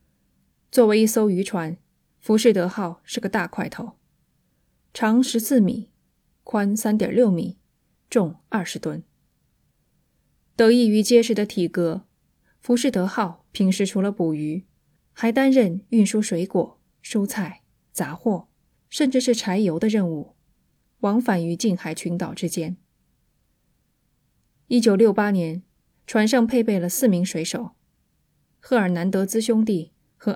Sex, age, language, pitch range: female, 20-39, Chinese, 175-225 Hz